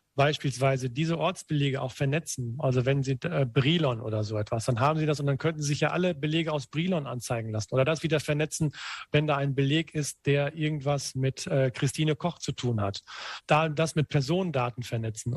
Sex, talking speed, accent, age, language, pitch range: male, 205 wpm, German, 40-59, German, 130-150 Hz